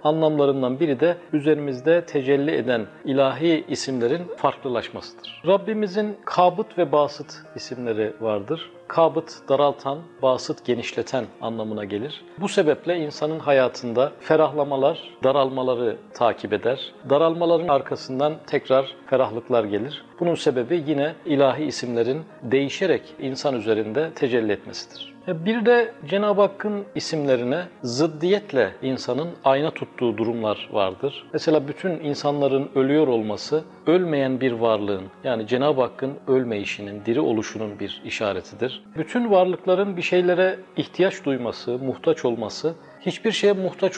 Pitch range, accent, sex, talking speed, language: 125-170 Hz, native, male, 115 wpm, Turkish